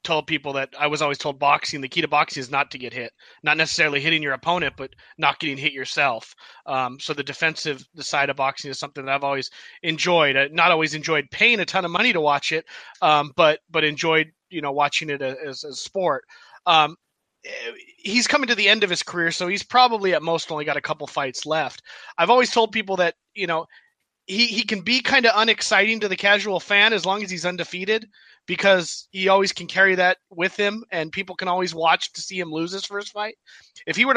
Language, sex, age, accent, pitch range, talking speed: English, male, 30-49, American, 155-200 Hz, 230 wpm